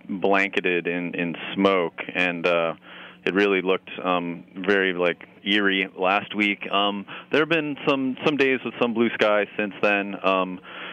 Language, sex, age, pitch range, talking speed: English, male, 30-49, 90-105 Hz, 160 wpm